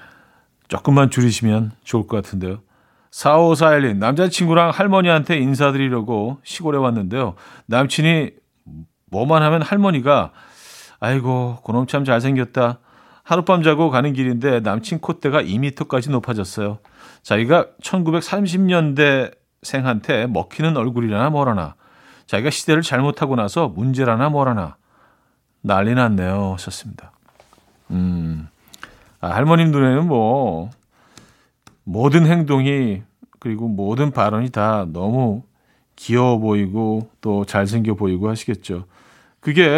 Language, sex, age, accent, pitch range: Korean, male, 40-59, native, 105-150 Hz